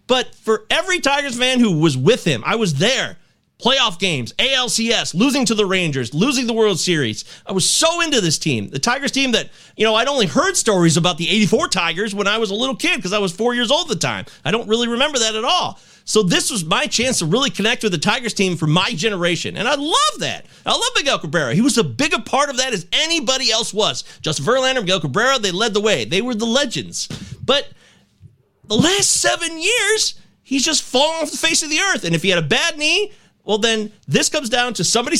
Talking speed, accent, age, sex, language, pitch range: 240 wpm, American, 30-49, male, English, 180-260 Hz